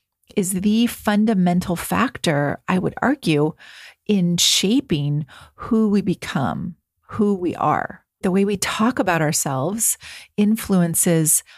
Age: 40-59